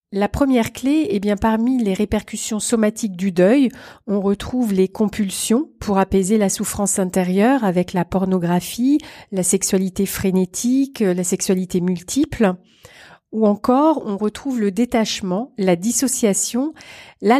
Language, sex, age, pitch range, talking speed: French, female, 40-59, 195-240 Hz, 130 wpm